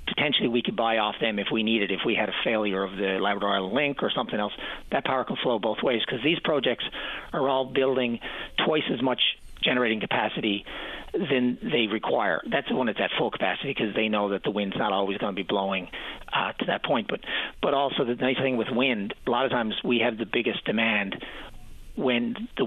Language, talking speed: English, 220 wpm